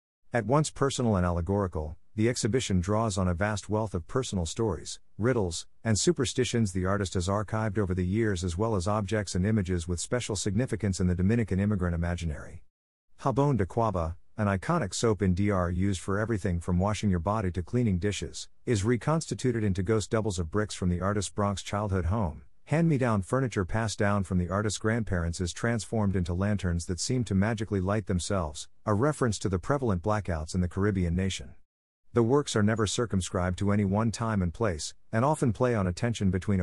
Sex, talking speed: male, 195 wpm